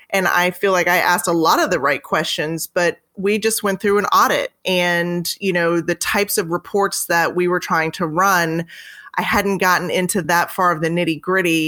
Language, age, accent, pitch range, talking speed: English, 20-39, American, 165-190 Hz, 215 wpm